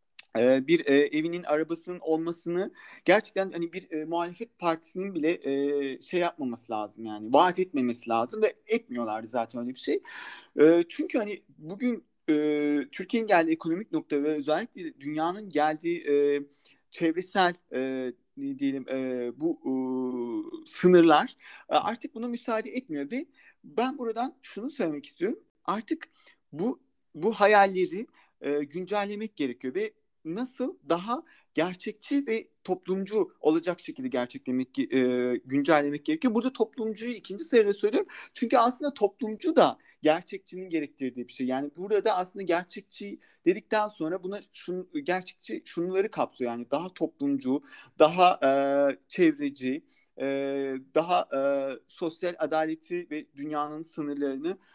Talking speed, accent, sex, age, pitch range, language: 115 wpm, native, male, 40-59, 145-220 Hz, Turkish